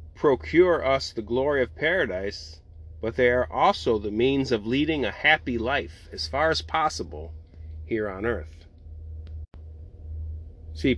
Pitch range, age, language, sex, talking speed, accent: 80-125 Hz, 30-49, English, male, 135 wpm, American